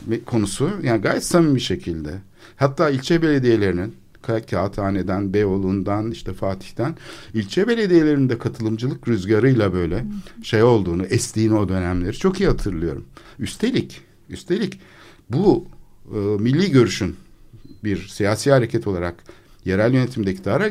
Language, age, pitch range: Turkish, 60-79, 95-140 Hz